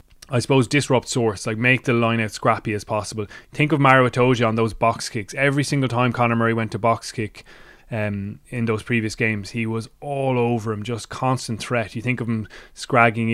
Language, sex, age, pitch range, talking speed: English, male, 20-39, 110-120 Hz, 205 wpm